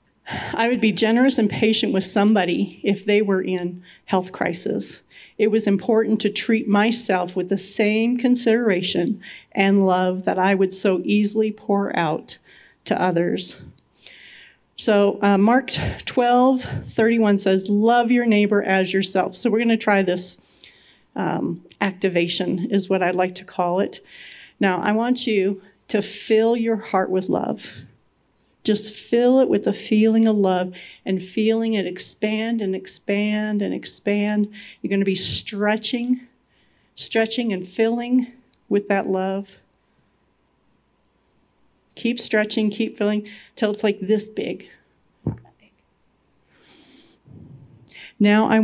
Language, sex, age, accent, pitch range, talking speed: English, female, 40-59, American, 190-225 Hz, 135 wpm